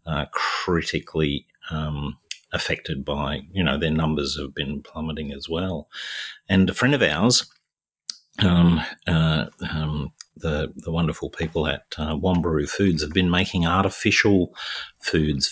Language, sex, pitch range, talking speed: English, male, 75-85 Hz, 135 wpm